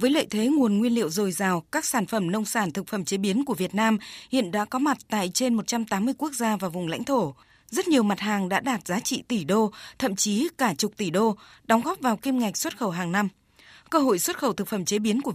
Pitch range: 195-250 Hz